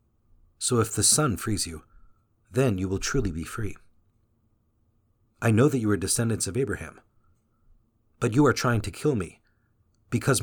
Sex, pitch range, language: male, 100-115 Hz, English